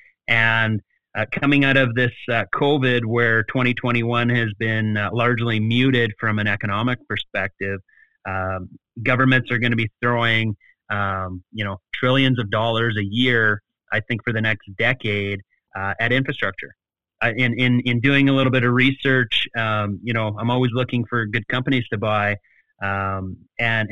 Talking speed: 165 wpm